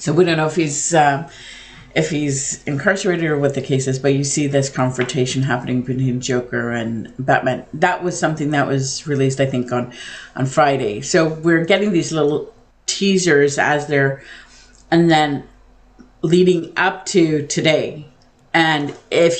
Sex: female